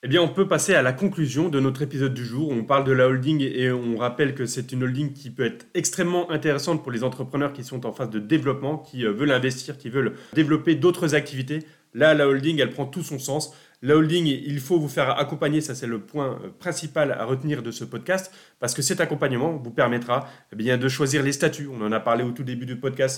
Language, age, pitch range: French, 30-49, 125-155 Hz